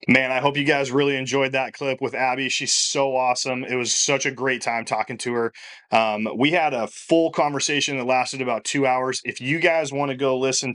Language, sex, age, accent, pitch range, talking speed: English, male, 30-49, American, 115-135 Hz, 230 wpm